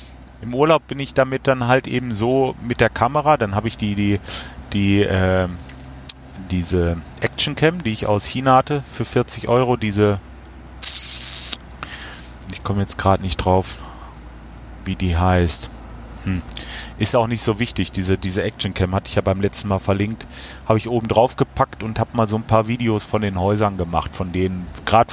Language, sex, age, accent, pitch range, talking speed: German, male, 30-49, German, 90-110 Hz, 180 wpm